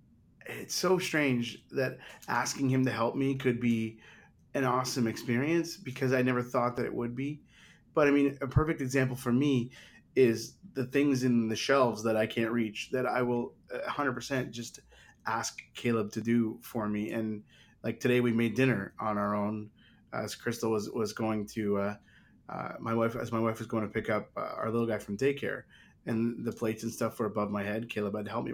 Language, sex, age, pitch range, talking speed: English, male, 30-49, 115-130 Hz, 205 wpm